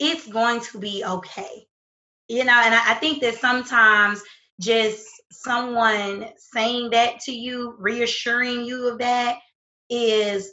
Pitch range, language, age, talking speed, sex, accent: 215-255 Hz, English, 20-39, 130 wpm, female, American